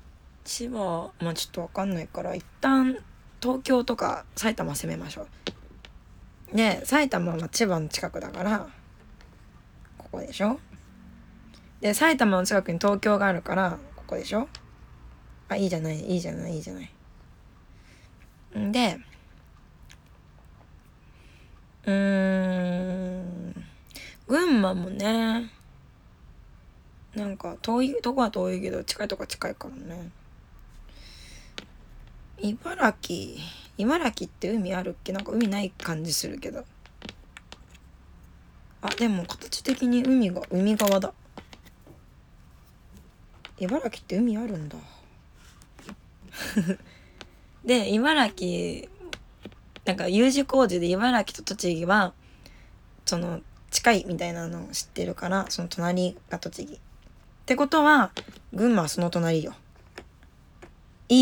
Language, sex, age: Japanese, female, 20-39